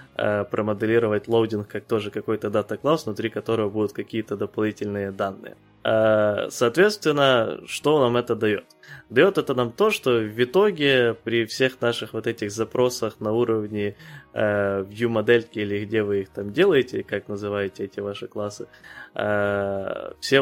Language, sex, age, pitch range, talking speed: Ukrainian, male, 20-39, 105-120 Hz, 135 wpm